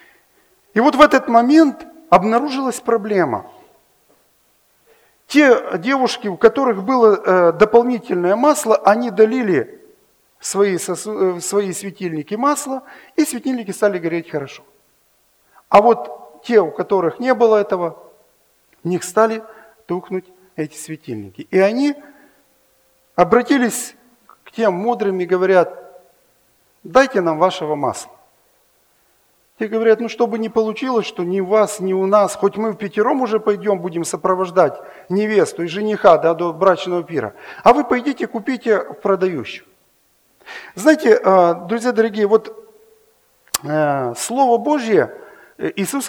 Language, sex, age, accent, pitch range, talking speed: Russian, male, 50-69, native, 185-250 Hz, 120 wpm